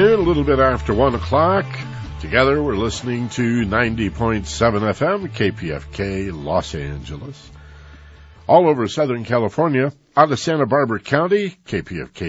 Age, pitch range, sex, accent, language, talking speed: 60-79, 80-120 Hz, male, American, English, 120 wpm